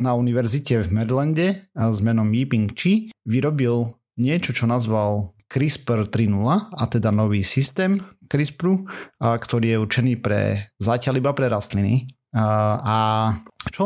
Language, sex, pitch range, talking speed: Slovak, male, 105-130 Hz, 130 wpm